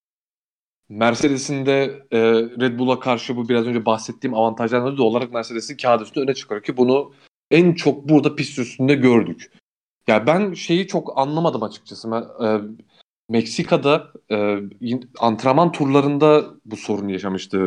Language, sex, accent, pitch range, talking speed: Turkish, male, native, 115-160 Hz, 135 wpm